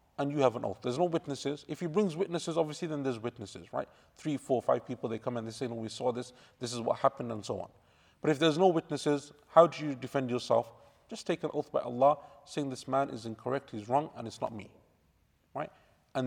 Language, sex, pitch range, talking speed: English, male, 125-160 Hz, 245 wpm